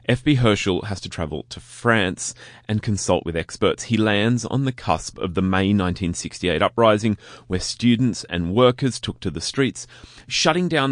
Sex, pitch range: male, 90-120 Hz